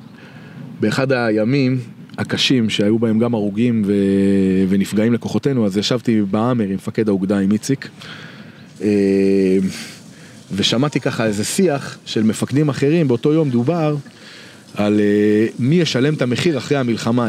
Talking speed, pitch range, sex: 120 wpm, 115-150 Hz, male